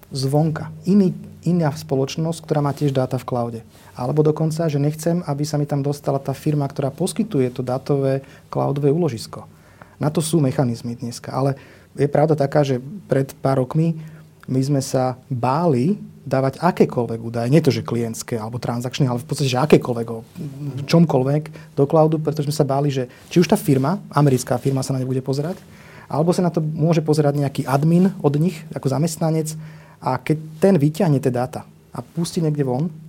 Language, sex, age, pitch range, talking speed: Slovak, male, 30-49, 130-155 Hz, 180 wpm